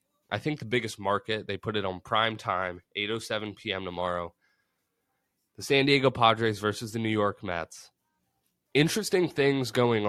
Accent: American